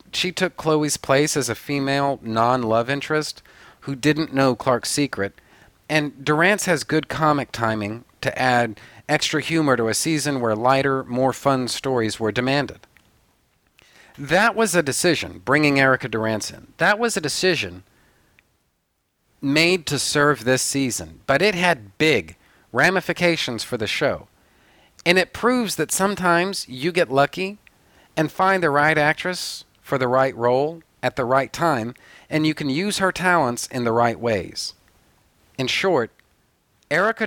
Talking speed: 150 wpm